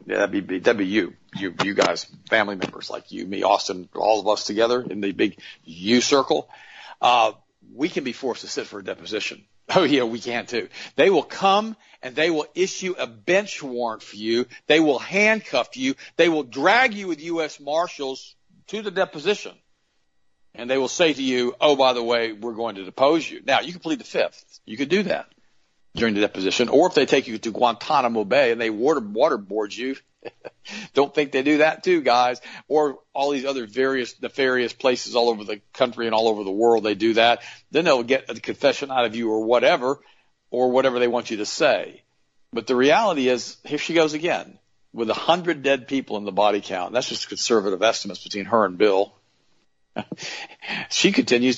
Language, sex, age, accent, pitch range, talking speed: English, male, 50-69, American, 115-155 Hz, 205 wpm